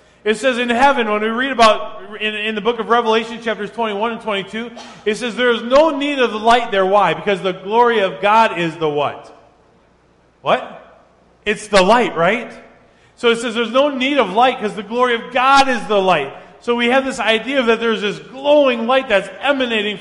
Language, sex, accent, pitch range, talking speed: English, male, American, 140-225 Hz, 205 wpm